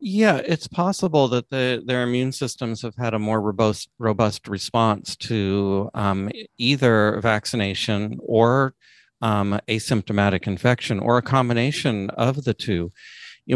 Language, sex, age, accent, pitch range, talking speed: English, male, 40-59, American, 100-125 Hz, 135 wpm